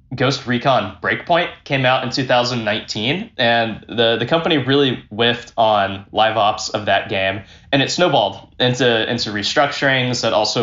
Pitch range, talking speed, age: 105-135 Hz, 150 wpm, 20-39